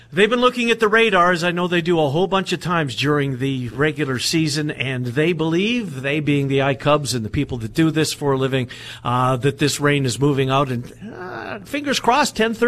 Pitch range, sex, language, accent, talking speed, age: 130-170 Hz, male, English, American, 220 wpm, 50-69